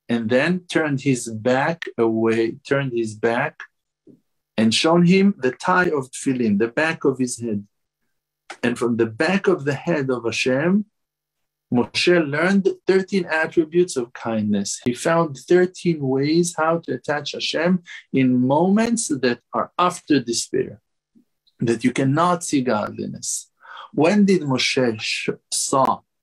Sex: male